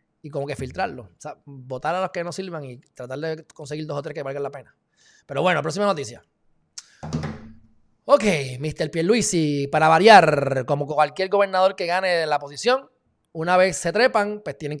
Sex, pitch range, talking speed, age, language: male, 135-180 Hz, 180 wpm, 20-39, Spanish